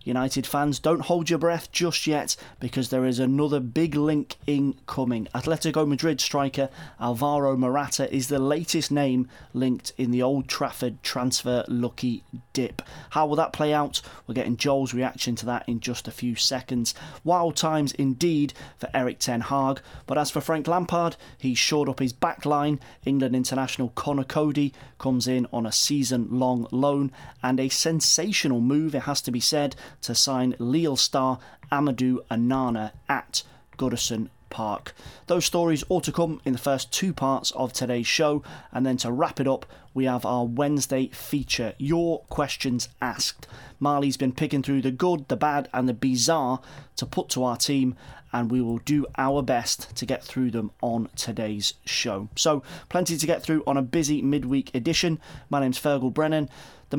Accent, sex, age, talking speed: British, male, 30-49, 175 wpm